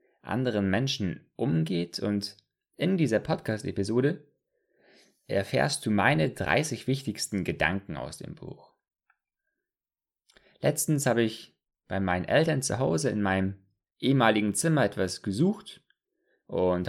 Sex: male